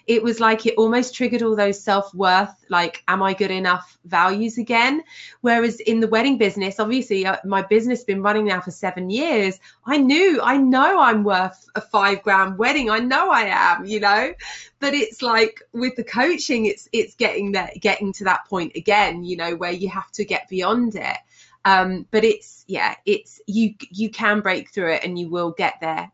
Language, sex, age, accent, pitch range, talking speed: English, female, 30-49, British, 185-235 Hz, 200 wpm